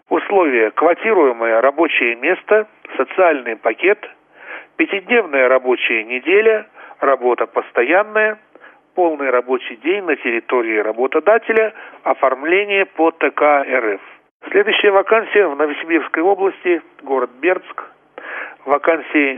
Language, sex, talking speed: Russian, male, 90 wpm